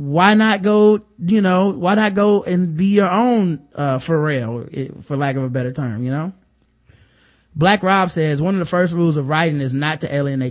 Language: English